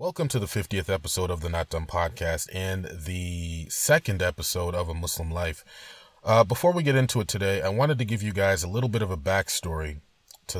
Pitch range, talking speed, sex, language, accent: 85-110 Hz, 215 wpm, male, English, American